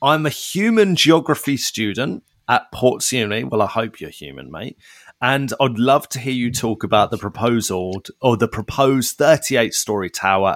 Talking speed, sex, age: 150 wpm, male, 30-49